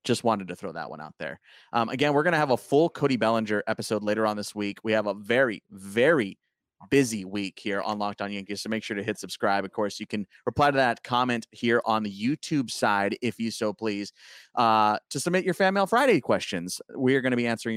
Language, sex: English, male